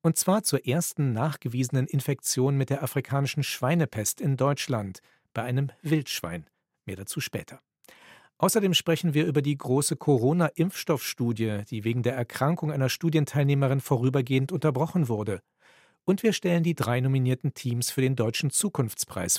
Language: German